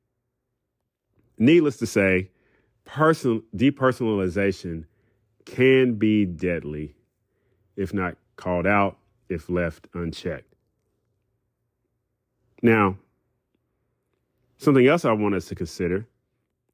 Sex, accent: male, American